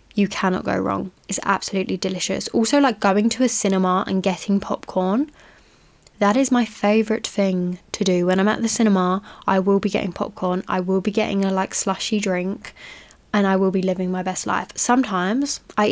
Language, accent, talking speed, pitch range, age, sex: English, British, 190 wpm, 185-220 Hz, 10-29, female